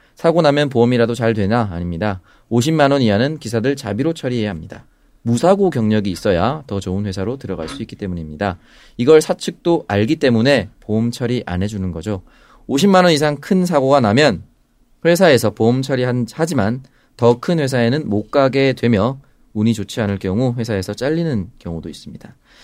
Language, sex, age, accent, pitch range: Korean, male, 30-49, native, 105-145 Hz